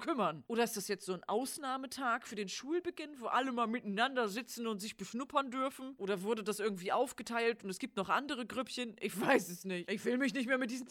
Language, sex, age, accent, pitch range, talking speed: German, female, 40-59, German, 190-240 Hz, 230 wpm